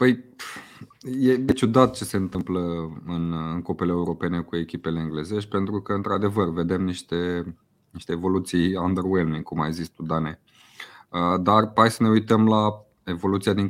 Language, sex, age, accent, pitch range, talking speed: Romanian, male, 20-39, native, 85-105 Hz, 150 wpm